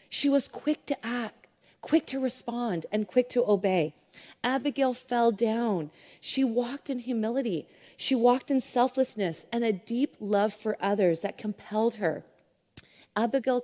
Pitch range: 205-265 Hz